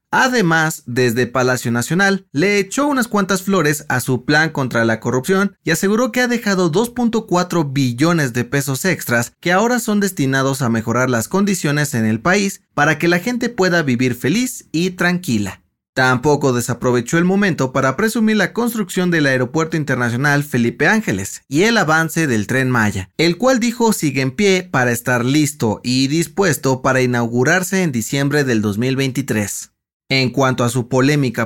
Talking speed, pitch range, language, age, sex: 165 wpm, 125-190 Hz, Spanish, 30-49, male